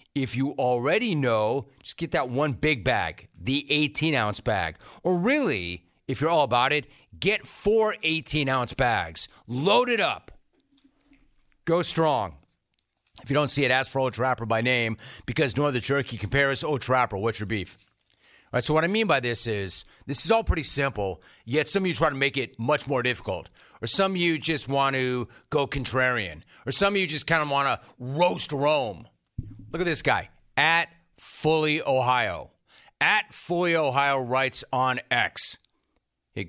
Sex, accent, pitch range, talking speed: male, American, 125-170 Hz, 180 wpm